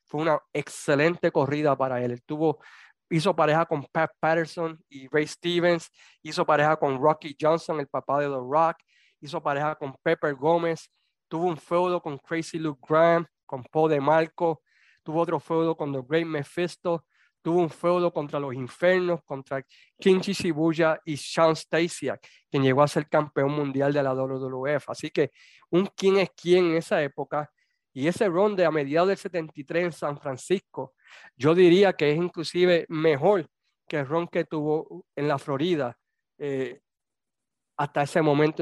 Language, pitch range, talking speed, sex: Spanish, 140-170 Hz, 165 wpm, male